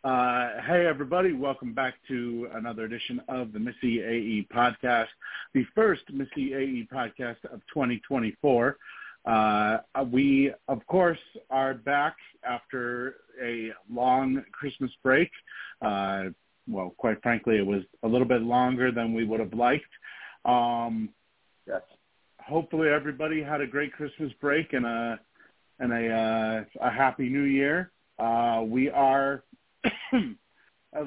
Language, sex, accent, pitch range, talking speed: English, male, American, 115-140 Hz, 135 wpm